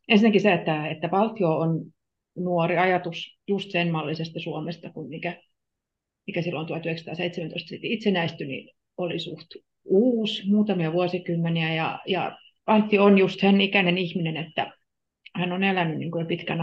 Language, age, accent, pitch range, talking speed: Finnish, 40-59, native, 160-195 Hz, 140 wpm